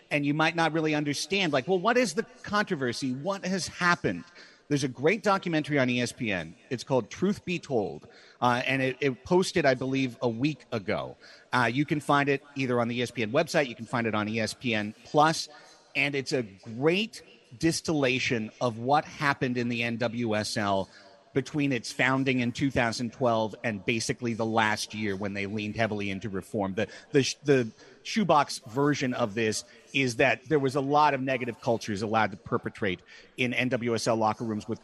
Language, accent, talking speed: English, American, 180 wpm